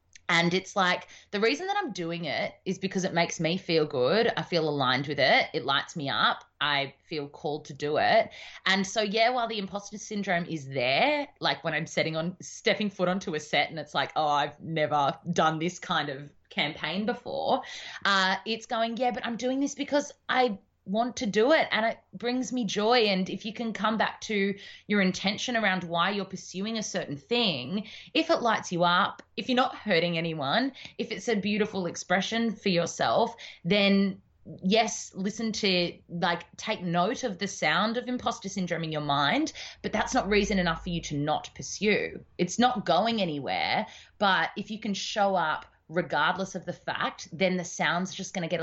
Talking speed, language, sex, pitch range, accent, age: 195 wpm, English, female, 165-225 Hz, Australian, 20-39